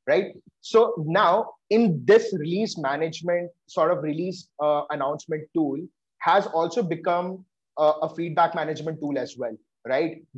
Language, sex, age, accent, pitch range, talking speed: English, male, 30-49, Indian, 140-165 Hz, 140 wpm